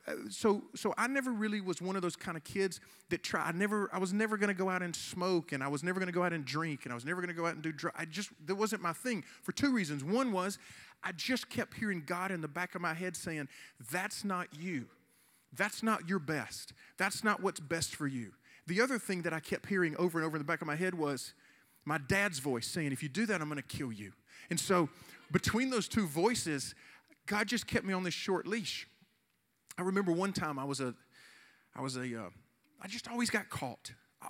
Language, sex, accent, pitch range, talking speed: English, male, American, 130-195 Hz, 245 wpm